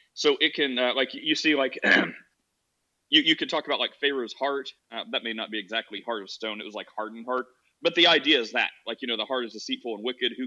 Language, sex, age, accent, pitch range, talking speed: English, male, 30-49, American, 110-125 Hz, 260 wpm